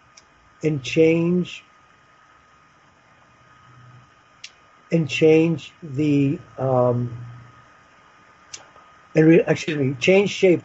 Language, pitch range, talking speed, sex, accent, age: English, 130-160 Hz, 60 wpm, male, American, 50-69